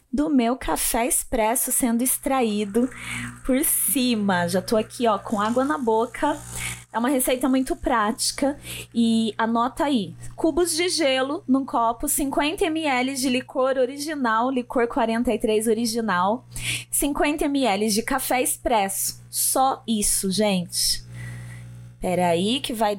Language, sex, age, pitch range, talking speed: Portuguese, female, 20-39, 210-275 Hz, 130 wpm